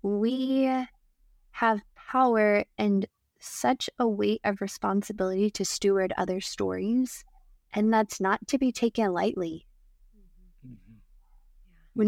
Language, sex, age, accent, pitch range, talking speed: English, female, 20-39, American, 185-220 Hz, 105 wpm